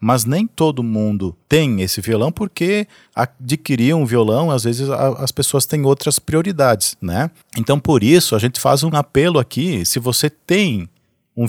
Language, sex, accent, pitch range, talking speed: Portuguese, male, Brazilian, 120-165 Hz, 165 wpm